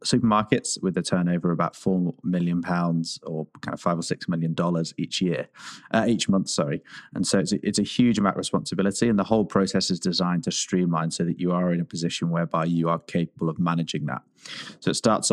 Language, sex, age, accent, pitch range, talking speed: English, male, 20-39, British, 85-95 Hz, 225 wpm